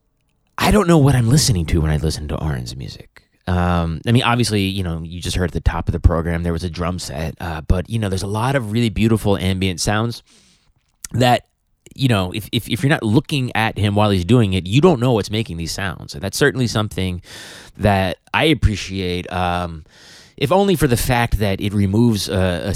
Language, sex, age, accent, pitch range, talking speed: English, male, 30-49, American, 95-135 Hz, 225 wpm